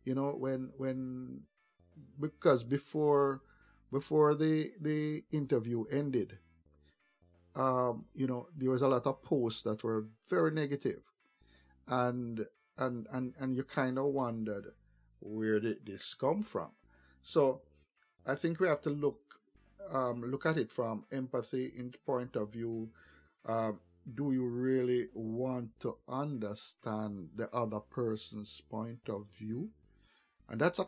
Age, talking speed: 50-69, 135 wpm